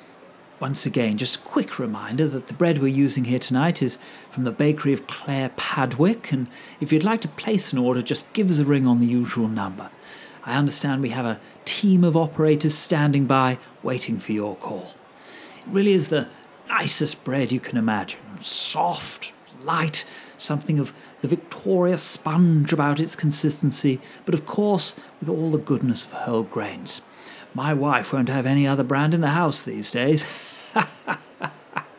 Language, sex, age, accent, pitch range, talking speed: English, male, 40-59, British, 140-195 Hz, 175 wpm